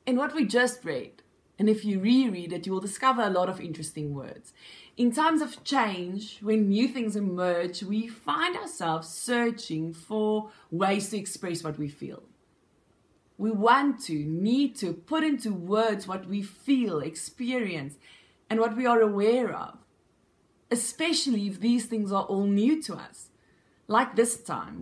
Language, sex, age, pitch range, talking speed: English, female, 20-39, 180-230 Hz, 160 wpm